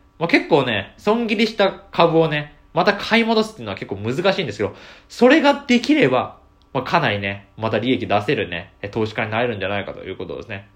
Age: 20-39